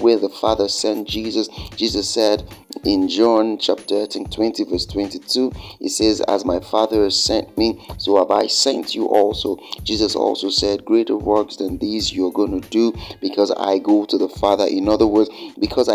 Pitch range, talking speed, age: 100-115 Hz, 185 wpm, 30-49